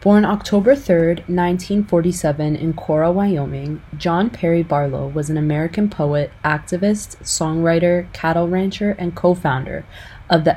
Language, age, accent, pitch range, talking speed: English, 20-39, American, 140-175 Hz, 125 wpm